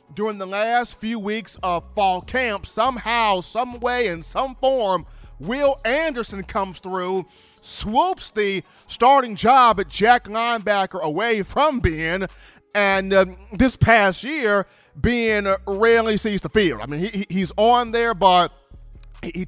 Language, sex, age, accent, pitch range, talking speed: English, male, 40-59, American, 175-225 Hz, 140 wpm